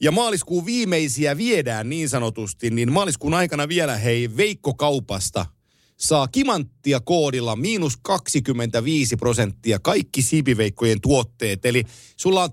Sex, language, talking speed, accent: male, Finnish, 115 wpm, native